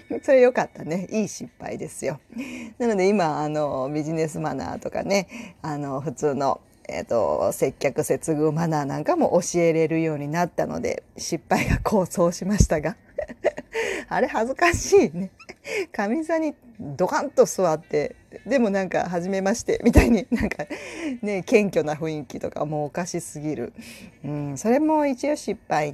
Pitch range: 155-240 Hz